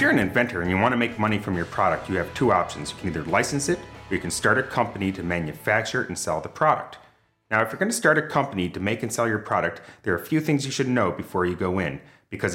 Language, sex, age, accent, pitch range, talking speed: English, male, 30-49, American, 100-125 Hz, 290 wpm